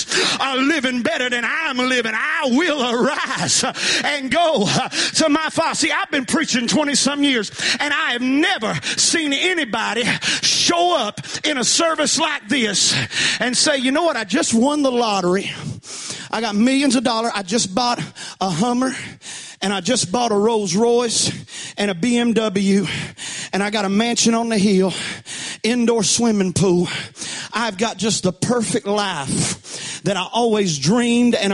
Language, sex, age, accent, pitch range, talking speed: English, male, 40-59, American, 195-260 Hz, 165 wpm